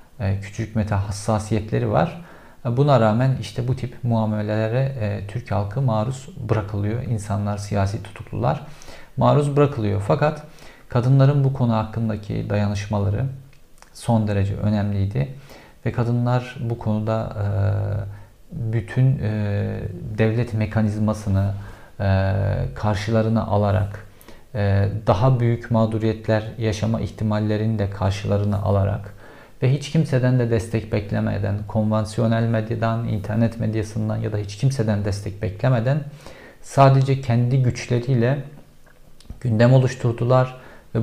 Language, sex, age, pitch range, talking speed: Turkish, male, 50-69, 105-125 Hz, 105 wpm